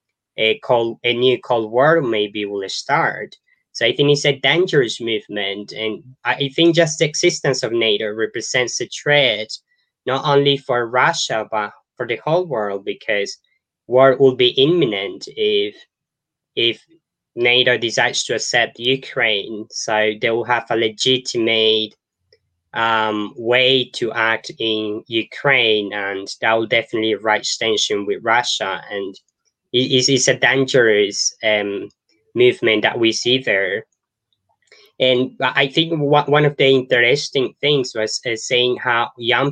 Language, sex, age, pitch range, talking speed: English, male, 10-29, 115-145 Hz, 140 wpm